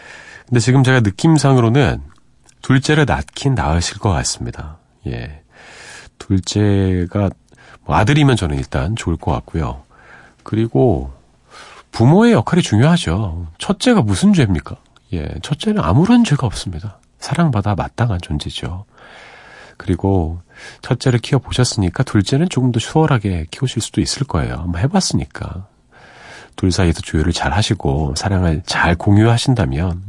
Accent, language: native, Korean